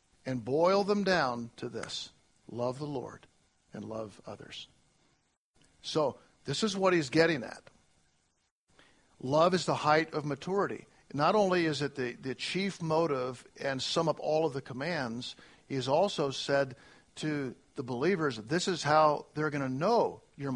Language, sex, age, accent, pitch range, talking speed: English, male, 50-69, American, 135-185 Hz, 160 wpm